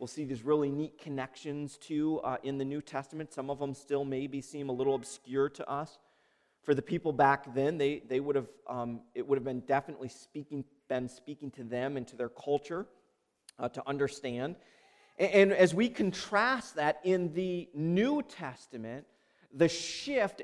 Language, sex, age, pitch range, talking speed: English, male, 40-59, 130-165 Hz, 180 wpm